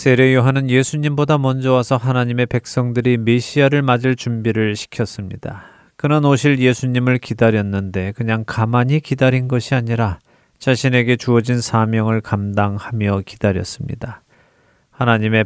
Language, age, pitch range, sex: Korean, 30-49, 105-130 Hz, male